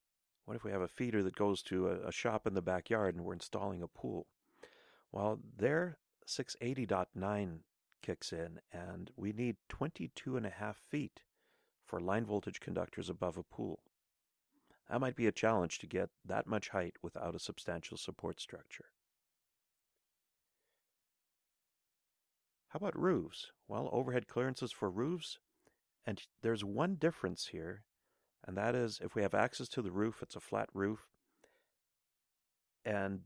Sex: male